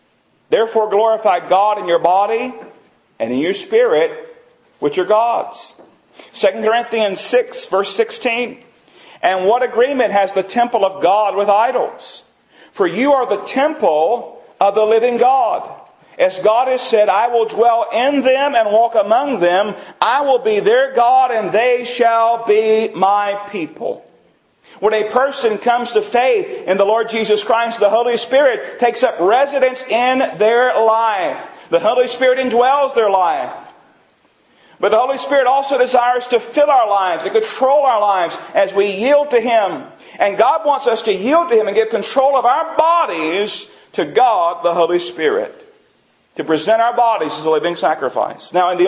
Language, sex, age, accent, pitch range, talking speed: English, male, 40-59, American, 200-265 Hz, 165 wpm